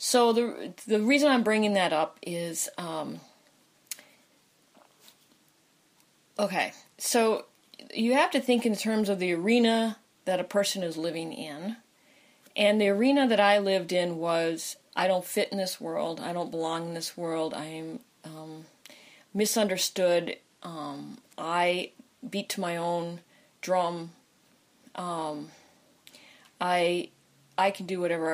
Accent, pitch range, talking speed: American, 170-225 Hz, 135 wpm